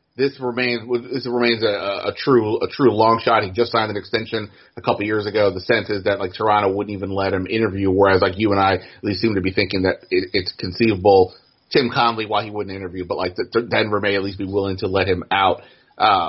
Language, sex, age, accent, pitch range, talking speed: English, male, 30-49, American, 100-120 Hz, 250 wpm